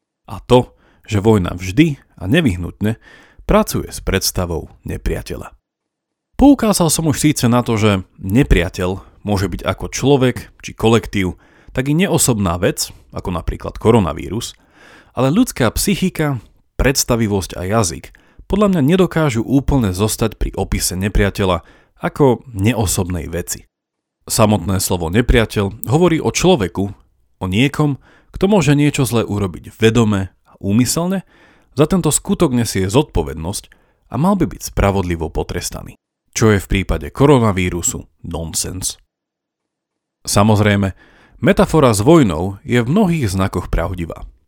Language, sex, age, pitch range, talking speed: Slovak, male, 40-59, 95-140 Hz, 125 wpm